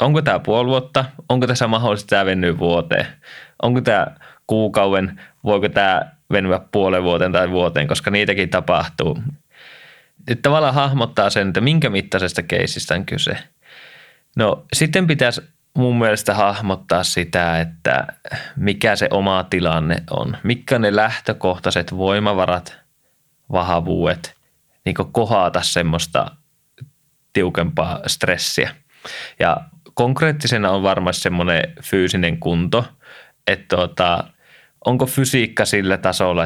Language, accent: Finnish, native